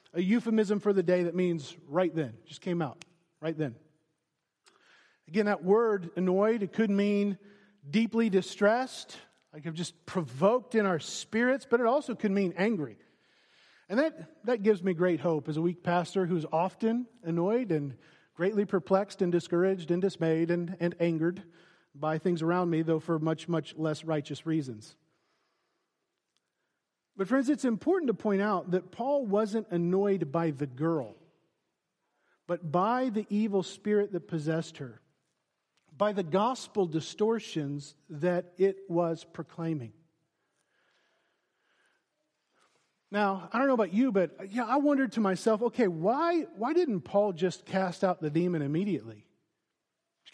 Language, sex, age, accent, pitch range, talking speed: English, male, 40-59, American, 165-215 Hz, 150 wpm